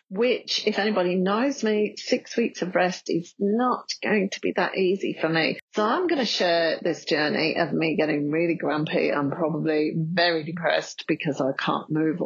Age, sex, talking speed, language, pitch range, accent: 40-59, female, 185 wpm, English, 155-195 Hz, British